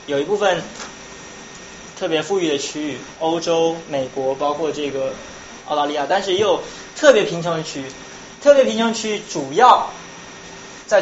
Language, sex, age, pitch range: Chinese, male, 20-39, 145-210 Hz